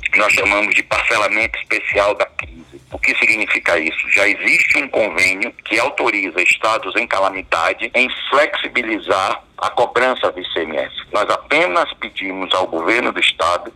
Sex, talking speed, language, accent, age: male, 145 wpm, Portuguese, Brazilian, 60-79